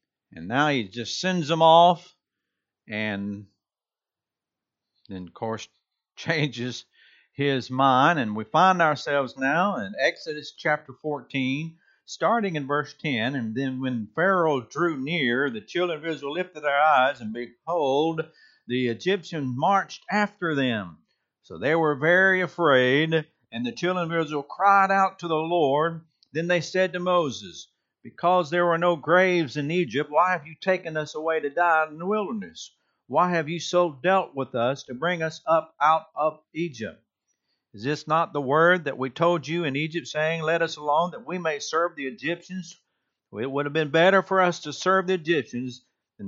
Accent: American